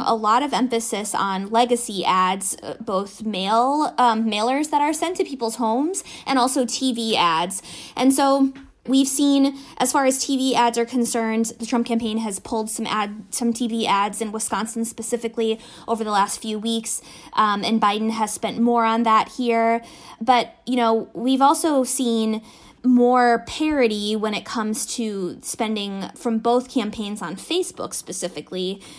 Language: English